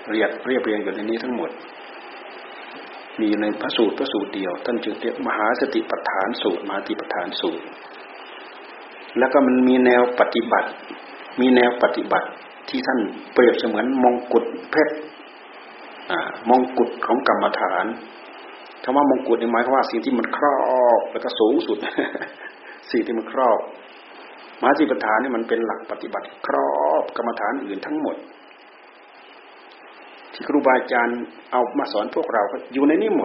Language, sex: Thai, male